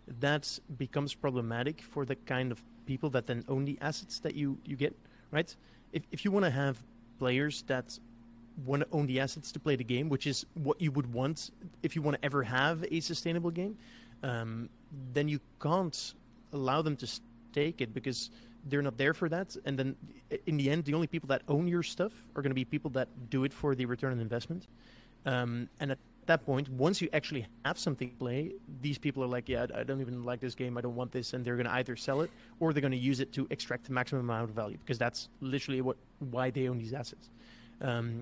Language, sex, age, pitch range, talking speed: English, male, 30-49, 125-145 Hz, 230 wpm